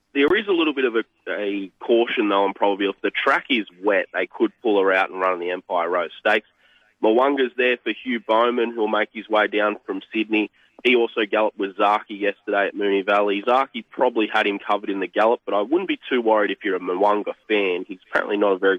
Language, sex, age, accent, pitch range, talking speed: English, male, 20-39, Australian, 100-120 Hz, 235 wpm